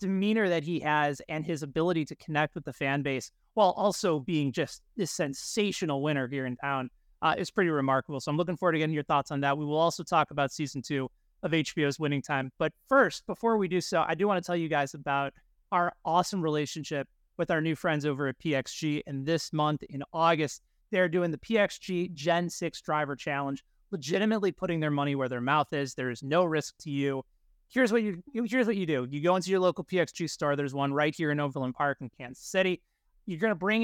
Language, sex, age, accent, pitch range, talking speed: English, male, 30-49, American, 140-180 Hz, 225 wpm